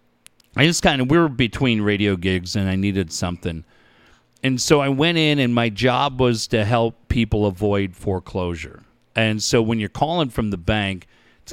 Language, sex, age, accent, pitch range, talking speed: English, male, 40-59, American, 105-135 Hz, 185 wpm